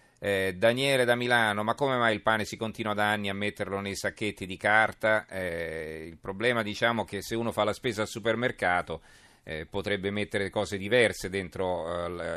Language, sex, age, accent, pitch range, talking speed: Italian, male, 40-59, native, 95-115 Hz, 185 wpm